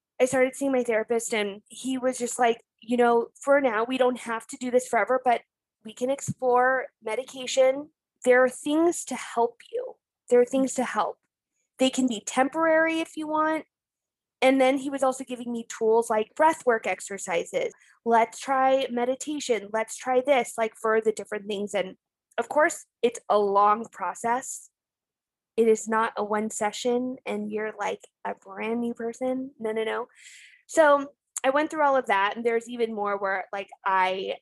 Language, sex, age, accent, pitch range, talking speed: English, female, 20-39, American, 220-265 Hz, 180 wpm